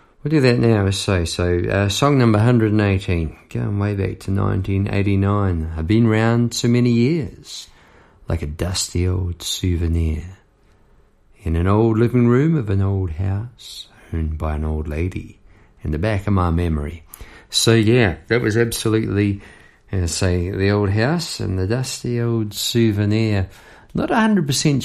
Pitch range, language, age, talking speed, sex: 90-115 Hz, English, 50-69, 150 wpm, male